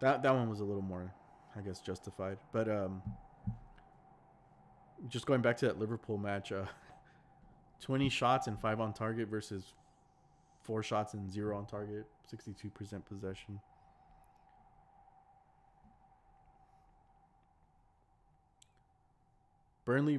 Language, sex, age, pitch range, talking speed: English, male, 20-39, 105-130 Hz, 105 wpm